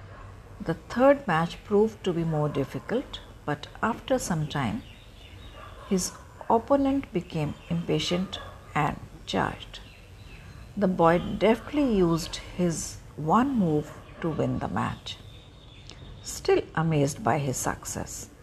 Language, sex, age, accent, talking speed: Hindi, female, 60-79, native, 110 wpm